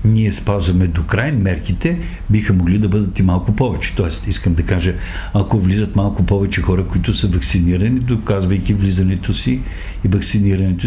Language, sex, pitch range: Bulgarian, male, 90-120 Hz